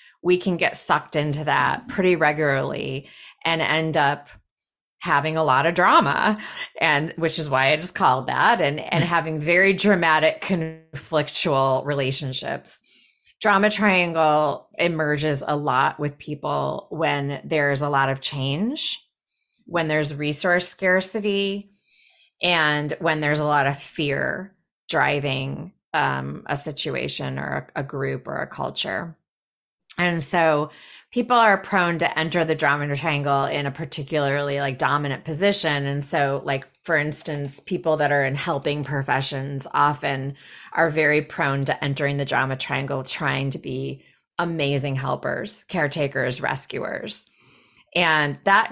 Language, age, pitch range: English, 20-39, 140-170 Hz